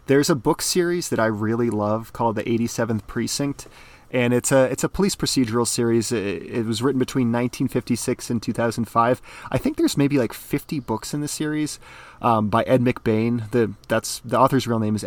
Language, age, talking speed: English, 30-49, 195 wpm